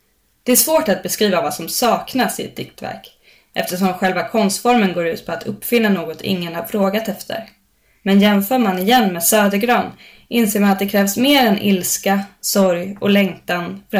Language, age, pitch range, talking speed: Swedish, 20-39, 180-210 Hz, 180 wpm